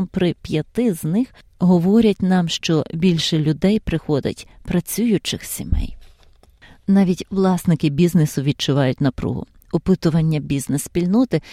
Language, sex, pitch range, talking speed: Ukrainian, female, 155-200 Hz, 100 wpm